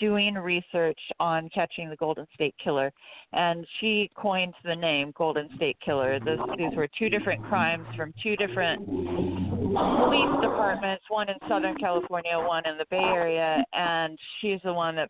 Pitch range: 155-190 Hz